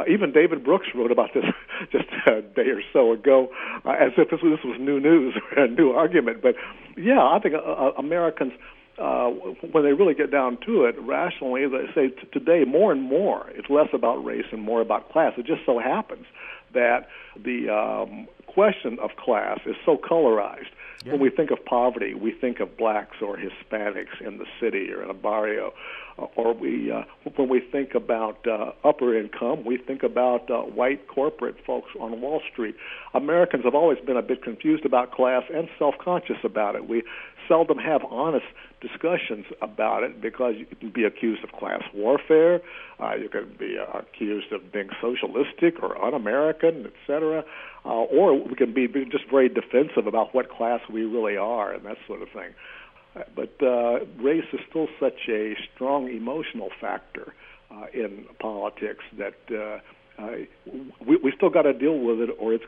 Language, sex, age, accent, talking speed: English, male, 60-79, American, 180 wpm